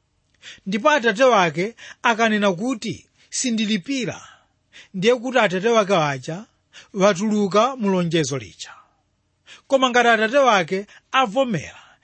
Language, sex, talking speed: English, male, 90 wpm